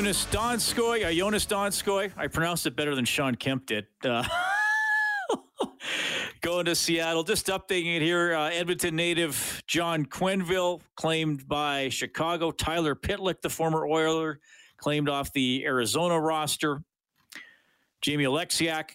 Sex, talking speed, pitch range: male, 130 wpm, 120-170 Hz